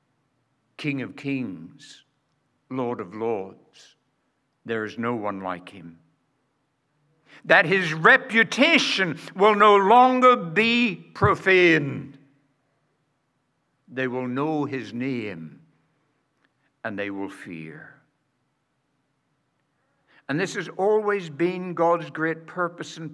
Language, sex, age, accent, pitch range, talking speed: English, male, 60-79, American, 140-205 Hz, 100 wpm